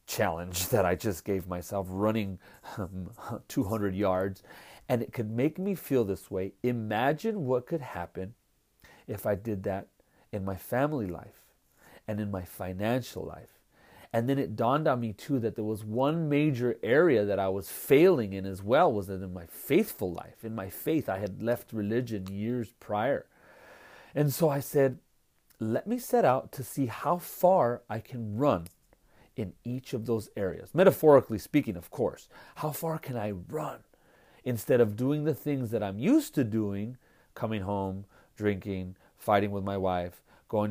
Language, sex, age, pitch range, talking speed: English, male, 40-59, 100-125 Hz, 170 wpm